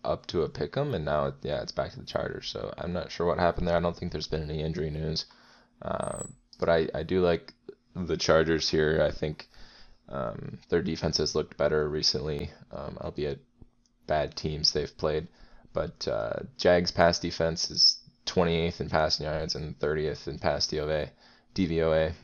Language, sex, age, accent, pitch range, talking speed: English, male, 10-29, American, 80-90 Hz, 185 wpm